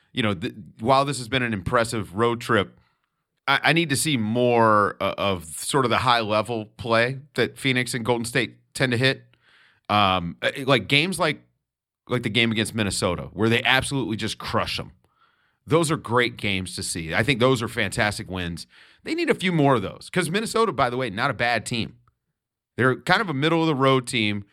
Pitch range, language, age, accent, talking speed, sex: 105-135 Hz, English, 30-49, American, 195 wpm, male